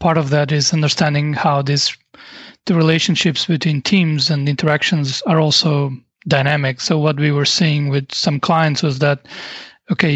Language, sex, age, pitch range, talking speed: English, male, 30-49, 145-175 Hz, 160 wpm